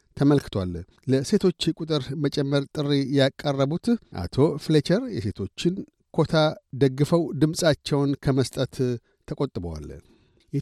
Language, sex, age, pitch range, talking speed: Amharic, male, 60-79, 135-155 Hz, 80 wpm